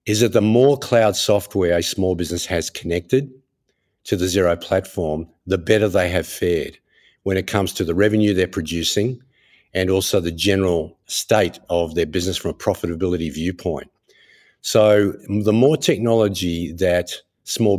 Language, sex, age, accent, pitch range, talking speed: English, male, 50-69, Australian, 90-110 Hz, 155 wpm